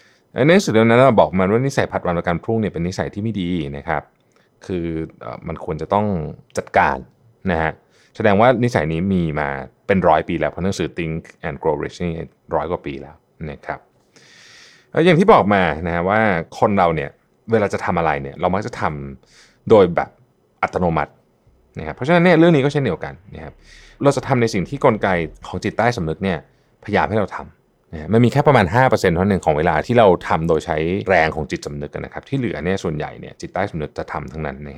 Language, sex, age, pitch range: Thai, male, 30-49, 80-115 Hz